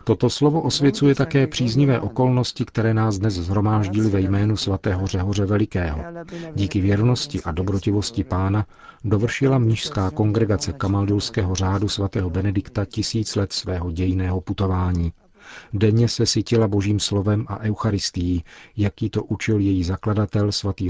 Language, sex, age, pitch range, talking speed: Czech, male, 40-59, 95-110 Hz, 130 wpm